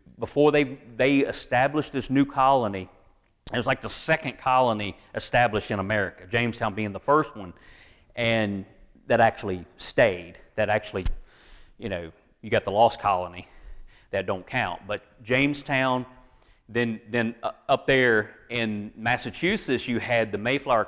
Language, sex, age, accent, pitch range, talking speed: English, male, 40-59, American, 105-135 Hz, 140 wpm